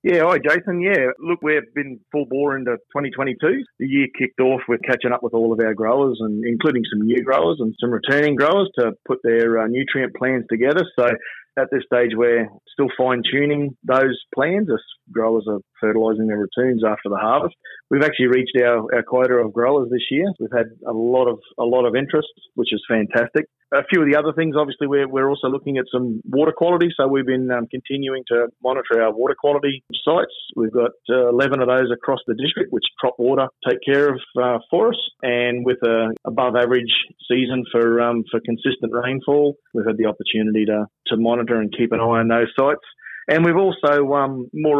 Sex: male